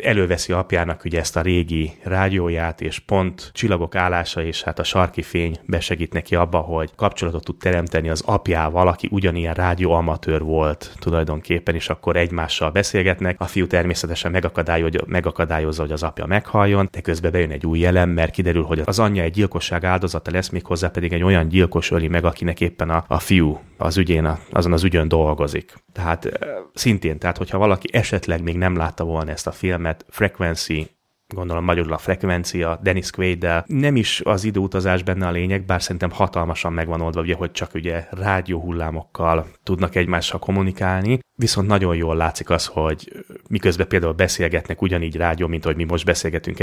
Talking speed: 170 wpm